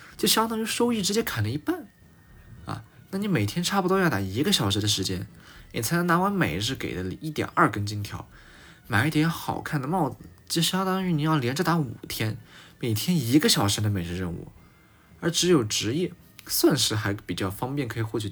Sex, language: male, Chinese